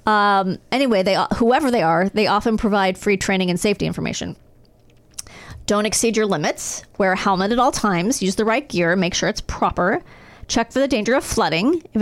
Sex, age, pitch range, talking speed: female, 30-49, 195-235 Hz, 195 wpm